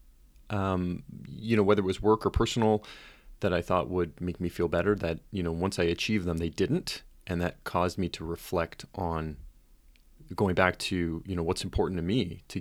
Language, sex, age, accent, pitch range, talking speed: English, male, 30-49, American, 85-115 Hz, 205 wpm